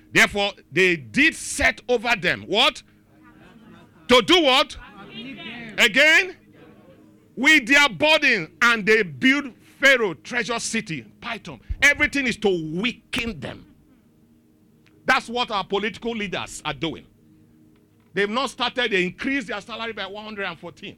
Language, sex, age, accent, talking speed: English, male, 50-69, Nigerian, 120 wpm